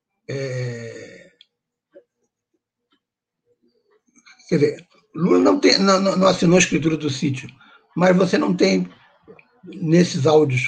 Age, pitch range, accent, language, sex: 60-79, 145-185 Hz, Brazilian, Portuguese, male